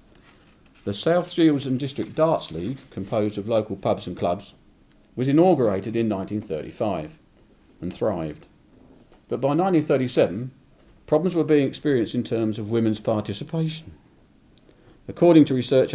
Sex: male